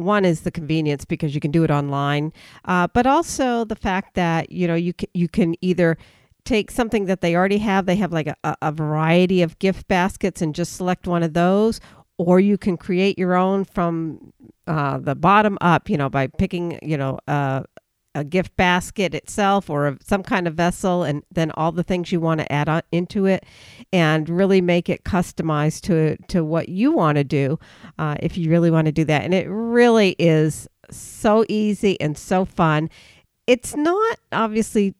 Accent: American